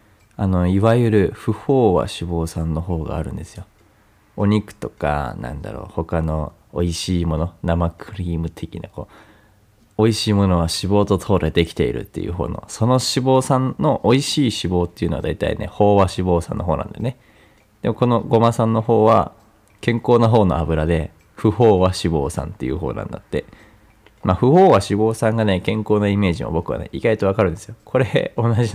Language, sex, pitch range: Japanese, male, 85-105 Hz